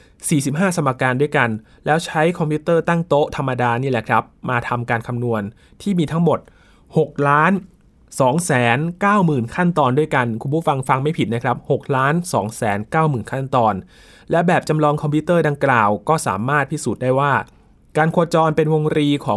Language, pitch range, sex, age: Thai, 120-150 Hz, male, 20-39